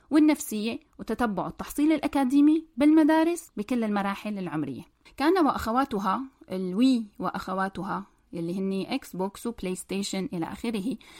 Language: Arabic